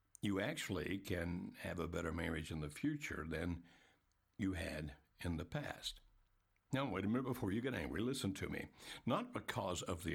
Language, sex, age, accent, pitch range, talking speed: English, male, 60-79, American, 90-110 Hz, 185 wpm